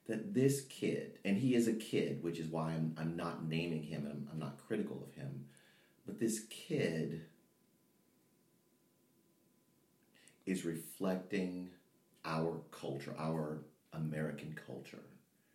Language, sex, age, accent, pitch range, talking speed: English, male, 40-59, American, 75-105 Hz, 125 wpm